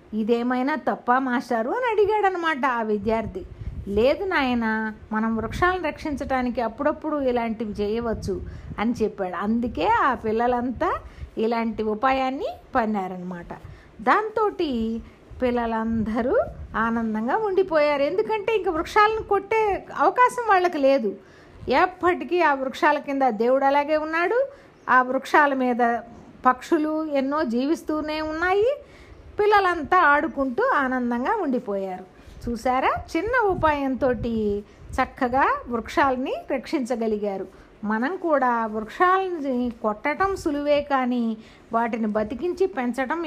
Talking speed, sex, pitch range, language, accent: 95 wpm, female, 230-330 Hz, Telugu, native